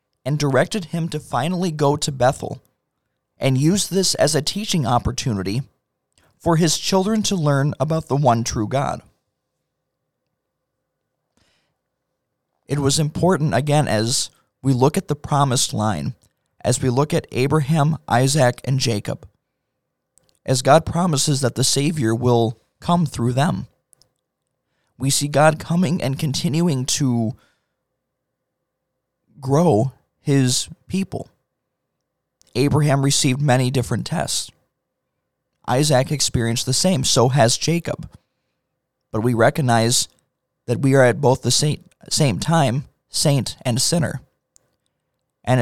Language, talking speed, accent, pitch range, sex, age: English, 120 wpm, American, 125-155 Hz, male, 20-39